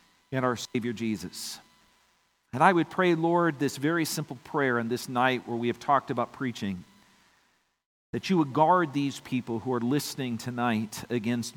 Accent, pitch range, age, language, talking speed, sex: American, 120-155 Hz, 50-69, English, 170 wpm, male